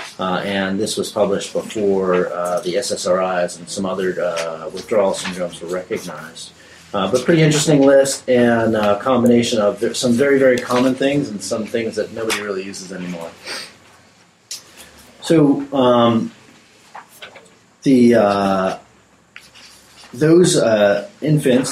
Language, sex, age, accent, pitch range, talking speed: English, male, 30-49, American, 90-115 Hz, 130 wpm